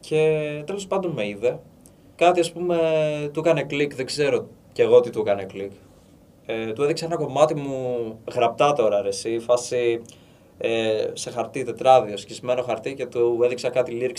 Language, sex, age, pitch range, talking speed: Greek, male, 20-39, 105-150 Hz, 160 wpm